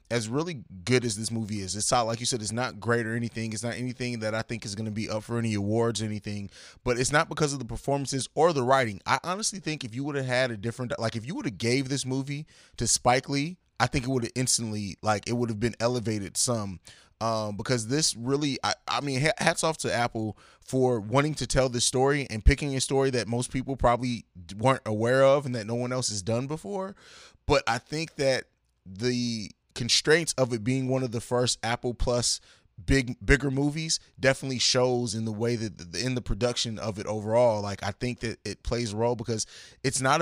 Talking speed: 230 wpm